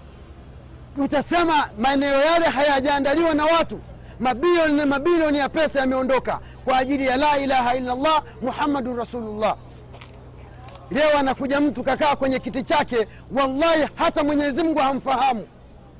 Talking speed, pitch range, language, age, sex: 125 wpm, 245-295 Hz, Swahili, 40-59, male